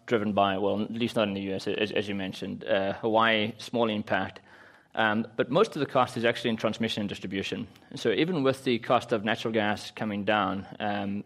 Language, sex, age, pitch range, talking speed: English, male, 20-39, 110-130 Hz, 215 wpm